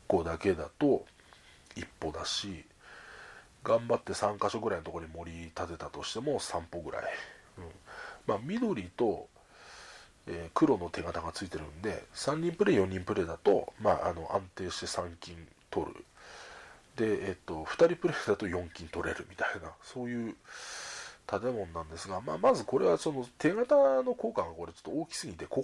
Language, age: Japanese, 40-59